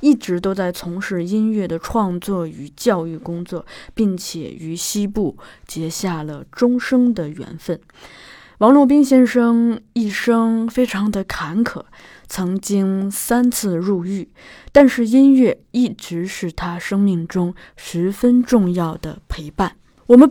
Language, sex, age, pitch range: Chinese, female, 20-39, 180-235 Hz